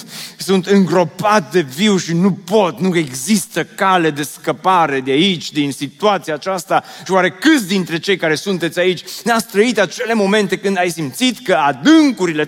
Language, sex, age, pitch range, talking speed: Romanian, male, 30-49, 165-215 Hz, 165 wpm